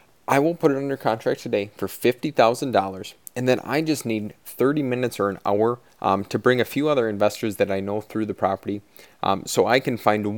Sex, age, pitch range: male, 30-49, 100-125 Hz